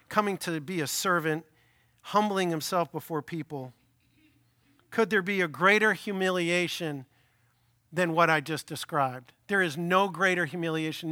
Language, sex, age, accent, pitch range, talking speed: English, male, 50-69, American, 150-215 Hz, 135 wpm